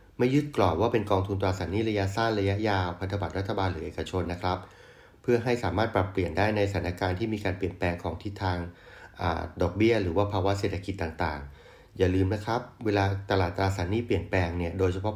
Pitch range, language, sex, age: 95-110 Hz, Thai, male, 30-49